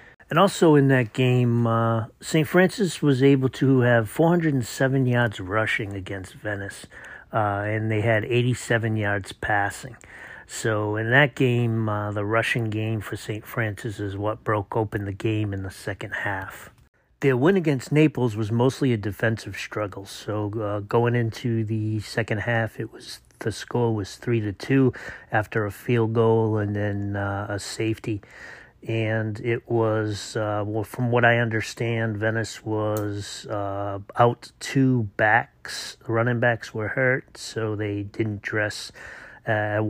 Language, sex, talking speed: English, male, 160 wpm